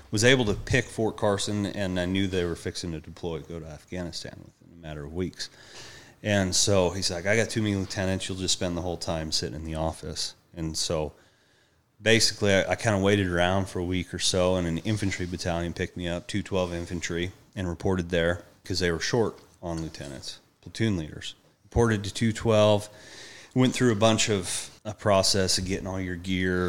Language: English